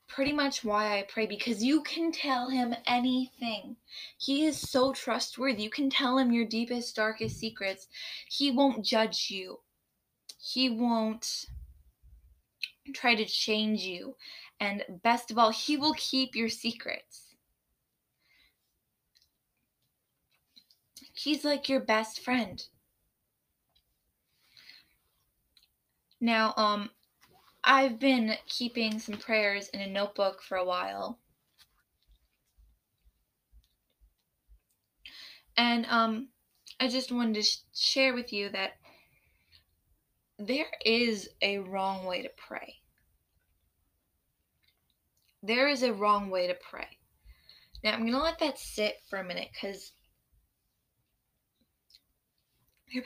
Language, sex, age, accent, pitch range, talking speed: English, female, 20-39, American, 200-260 Hz, 110 wpm